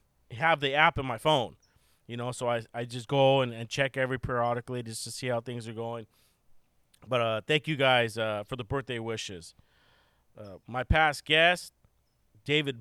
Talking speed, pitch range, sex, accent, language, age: 185 wpm, 115-135 Hz, male, American, English, 30-49